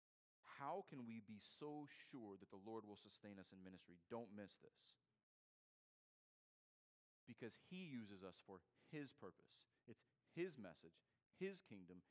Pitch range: 100-150 Hz